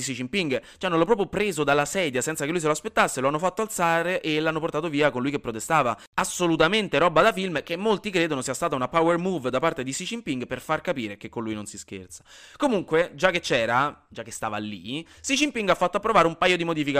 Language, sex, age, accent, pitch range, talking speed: Italian, male, 20-39, native, 130-190 Hz, 245 wpm